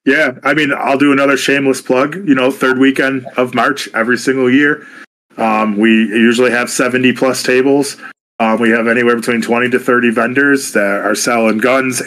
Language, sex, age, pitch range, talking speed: English, male, 20-39, 115-130 Hz, 180 wpm